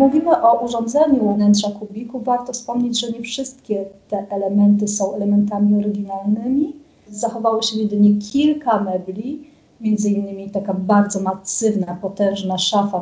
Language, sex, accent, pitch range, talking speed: Polish, female, native, 195-225 Hz, 125 wpm